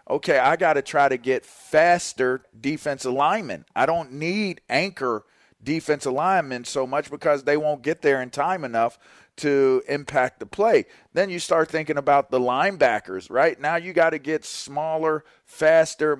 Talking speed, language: 165 wpm, English